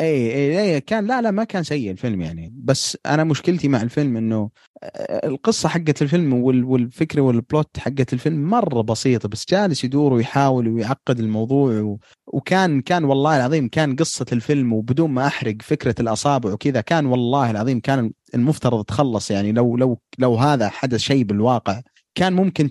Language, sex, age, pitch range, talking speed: Arabic, male, 30-49, 120-155 Hz, 165 wpm